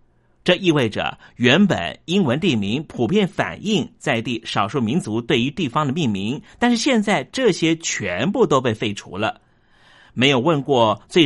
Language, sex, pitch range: Chinese, male, 120-195 Hz